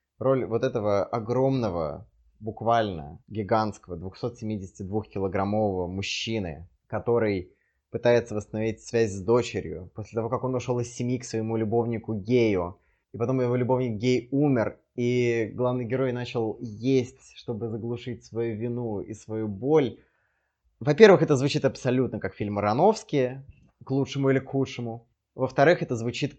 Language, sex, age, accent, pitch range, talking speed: Russian, male, 20-39, native, 110-130 Hz, 130 wpm